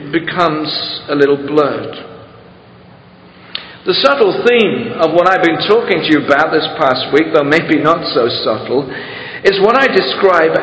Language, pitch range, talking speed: English, 155-200 Hz, 150 wpm